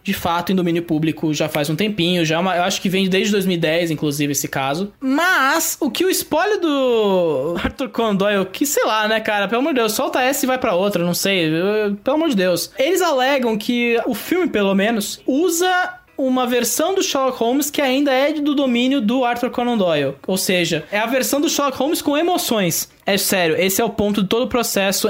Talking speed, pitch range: 215 wpm, 195-265 Hz